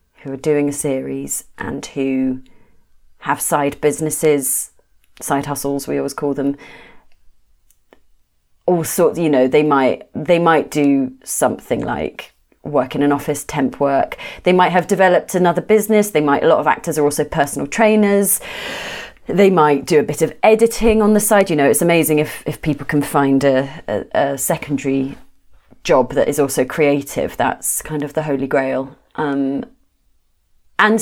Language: English